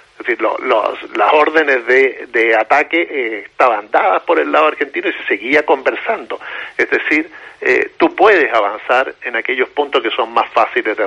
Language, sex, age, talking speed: Spanish, male, 50-69, 185 wpm